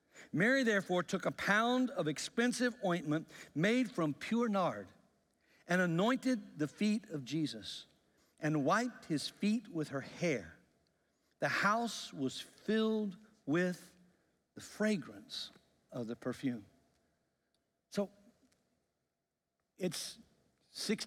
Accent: American